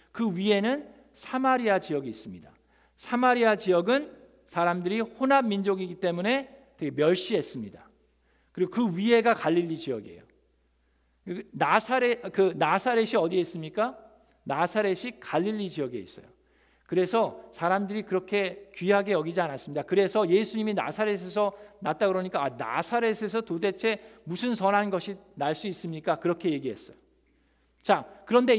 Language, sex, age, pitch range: Korean, male, 50-69, 175-235 Hz